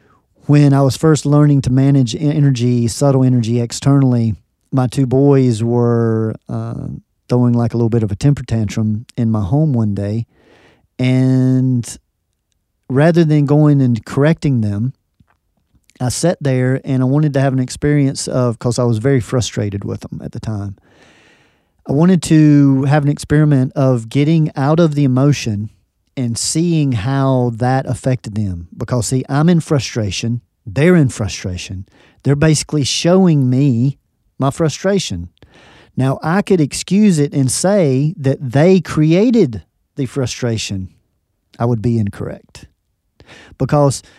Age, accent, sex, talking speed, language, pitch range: 40-59, American, male, 145 wpm, English, 115-145 Hz